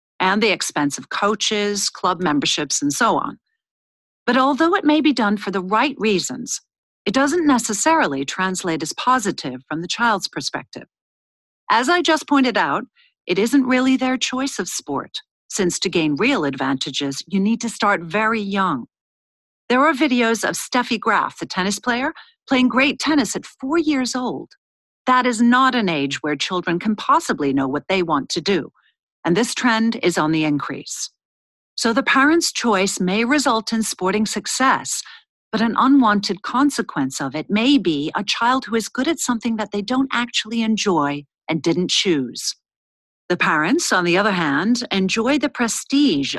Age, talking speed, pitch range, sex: 50-69, 170 wpm, 180-260 Hz, female